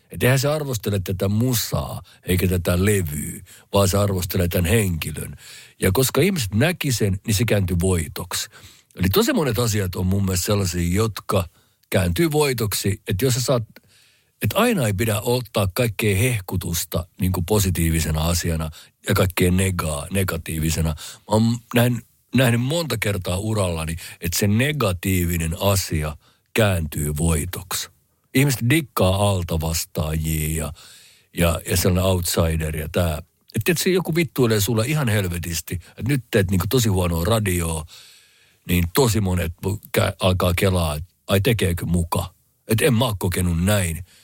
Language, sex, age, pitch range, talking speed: Finnish, male, 50-69, 85-110 Hz, 140 wpm